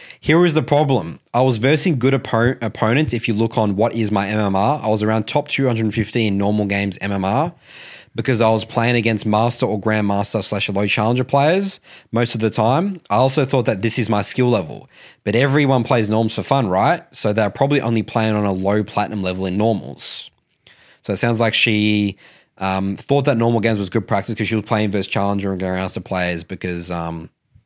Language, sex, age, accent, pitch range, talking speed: English, male, 20-39, Australian, 105-130 Hz, 205 wpm